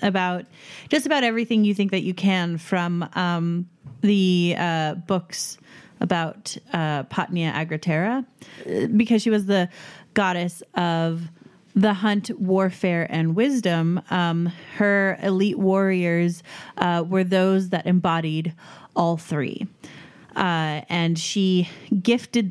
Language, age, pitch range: English, 30-49, 165-195 Hz